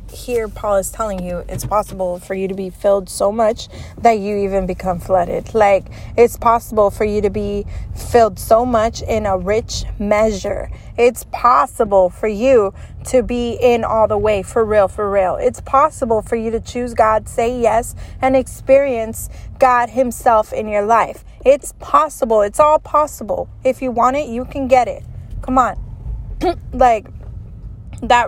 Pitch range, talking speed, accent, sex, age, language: 195-250 Hz, 170 wpm, American, female, 20-39, English